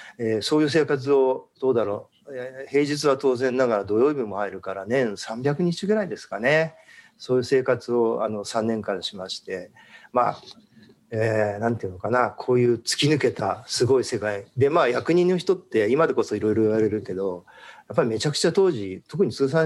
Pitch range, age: 115-170 Hz, 40-59